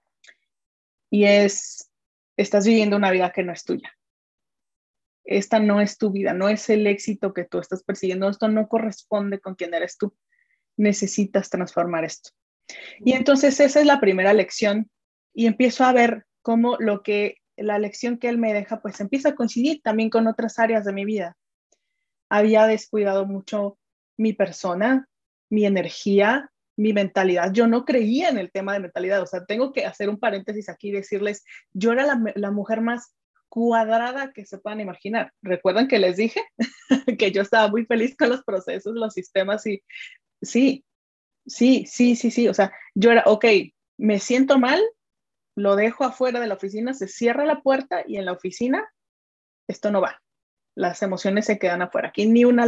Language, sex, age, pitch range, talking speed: Spanish, female, 30-49, 200-240 Hz, 175 wpm